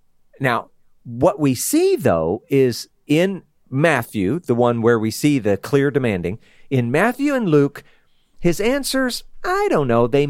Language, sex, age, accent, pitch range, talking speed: English, male, 40-59, American, 120-170 Hz, 150 wpm